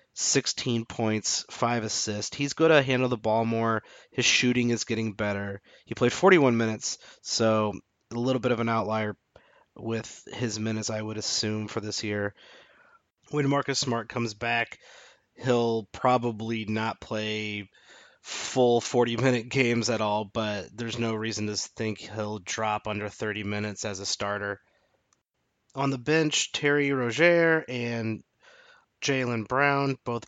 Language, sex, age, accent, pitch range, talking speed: English, male, 30-49, American, 105-125 Hz, 145 wpm